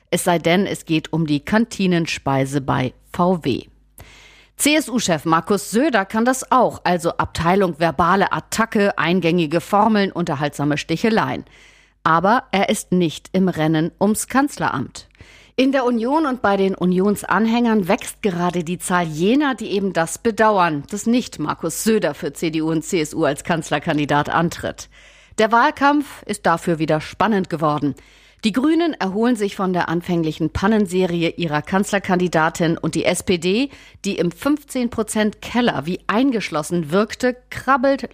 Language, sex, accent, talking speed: German, female, German, 135 wpm